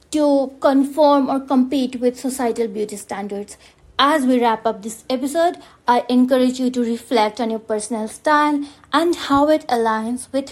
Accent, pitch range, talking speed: Indian, 235-290 Hz, 160 wpm